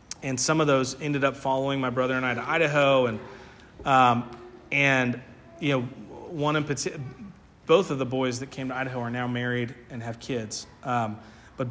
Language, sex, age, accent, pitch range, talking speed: English, male, 30-49, American, 115-135 Hz, 190 wpm